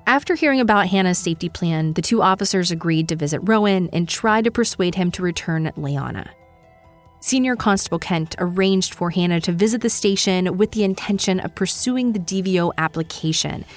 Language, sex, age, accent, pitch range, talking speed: English, female, 20-39, American, 155-215 Hz, 170 wpm